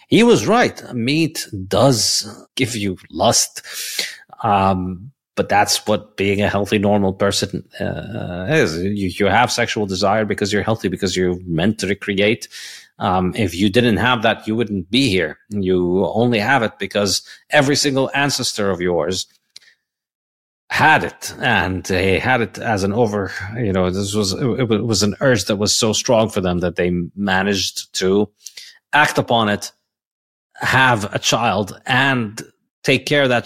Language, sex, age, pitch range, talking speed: English, male, 30-49, 95-120 Hz, 165 wpm